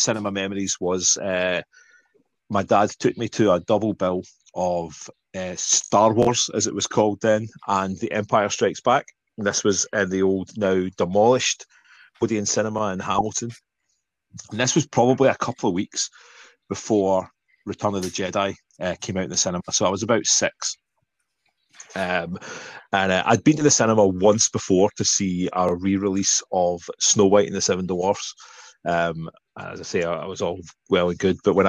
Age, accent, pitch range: 30-49, British, 90-110 Hz